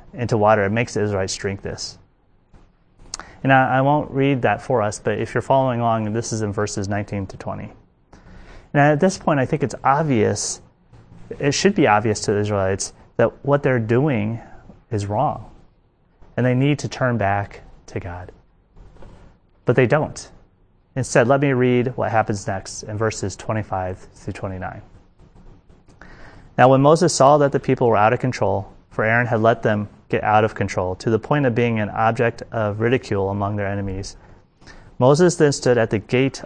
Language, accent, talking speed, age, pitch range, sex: English, American, 180 wpm, 30-49, 100-125 Hz, male